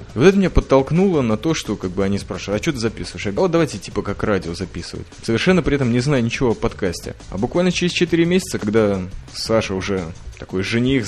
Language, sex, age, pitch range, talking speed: Russian, male, 20-39, 100-135 Hz, 225 wpm